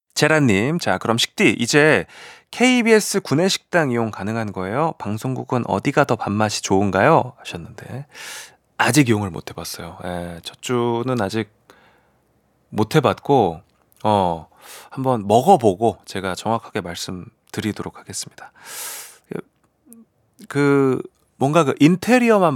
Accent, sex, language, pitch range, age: native, male, Korean, 105-180 Hz, 30-49